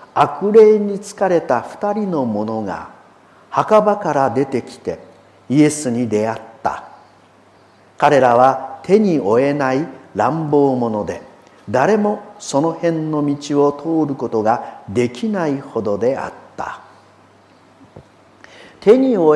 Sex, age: male, 50-69